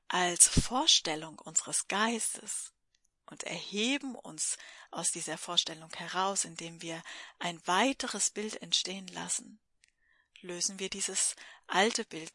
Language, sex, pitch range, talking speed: German, female, 175-215 Hz, 110 wpm